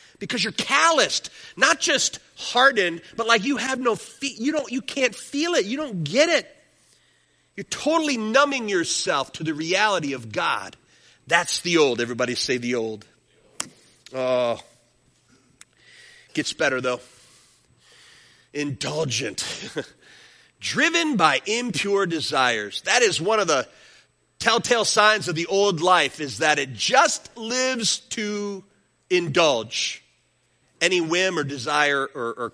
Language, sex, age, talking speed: English, male, 40-59, 130 wpm